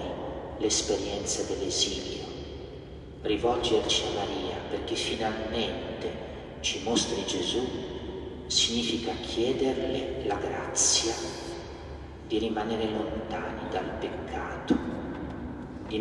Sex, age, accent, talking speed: male, 40-59, native, 75 wpm